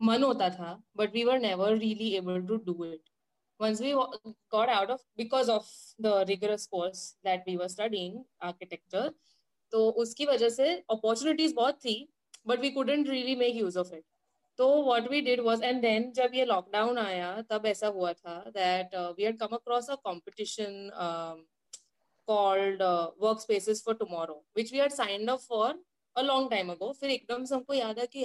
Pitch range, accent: 195-255 Hz, native